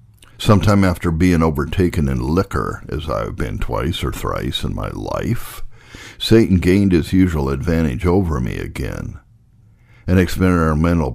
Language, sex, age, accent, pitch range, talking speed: English, male, 60-79, American, 80-105 Hz, 140 wpm